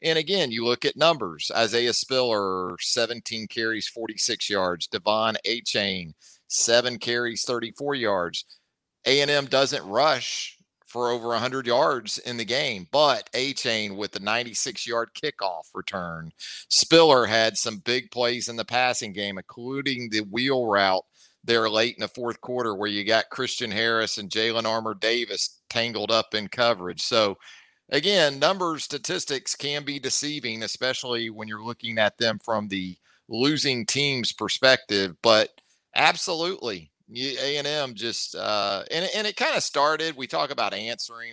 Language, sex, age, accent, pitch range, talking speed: English, male, 50-69, American, 110-130 Hz, 145 wpm